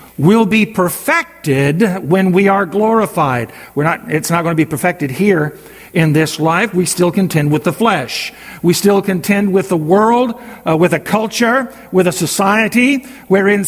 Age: 50-69